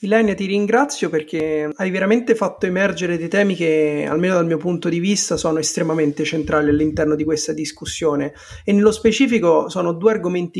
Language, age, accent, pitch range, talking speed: Italian, 30-49, native, 160-195 Hz, 170 wpm